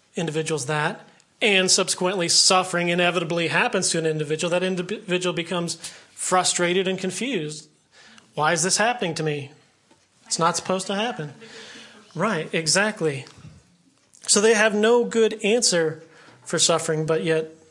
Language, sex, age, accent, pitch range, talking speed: English, male, 30-49, American, 165-195 Hz, 130 wpm